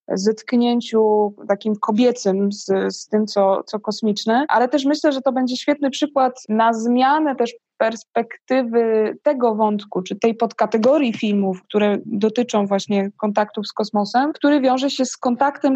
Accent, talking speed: native, 145 wpm